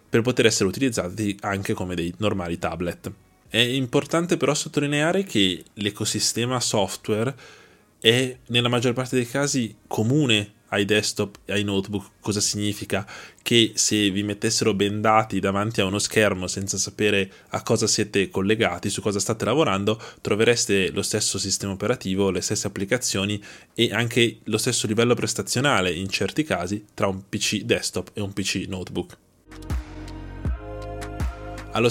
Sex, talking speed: male, 140 wpm